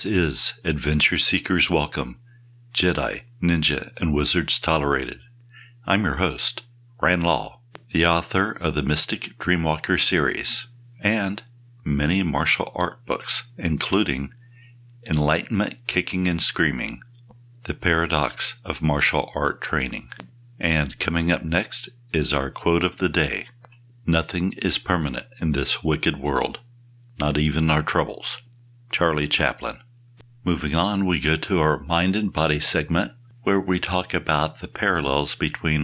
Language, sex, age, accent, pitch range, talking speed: English, male, 60-79, American, 75-120 Hz, 130 wpm